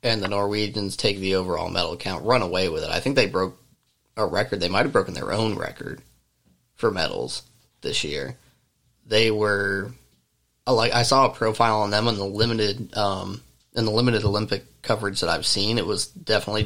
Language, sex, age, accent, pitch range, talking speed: English, male, 20-39, American, 105-120 Hz, 195 wpm